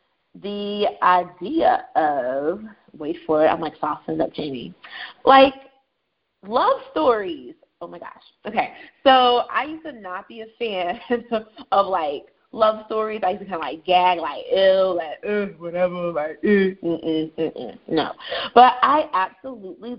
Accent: American